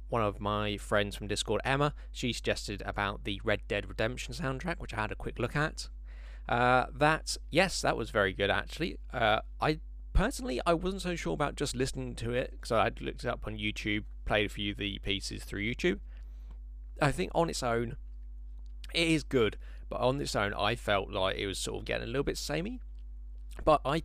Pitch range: 85-115 Hz